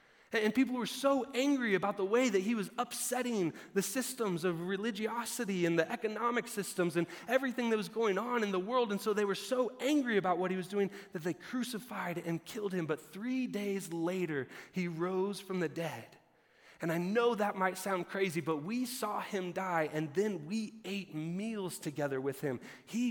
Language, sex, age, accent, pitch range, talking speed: English, male, 30-49, American, 150-205 Hz, 195 wpm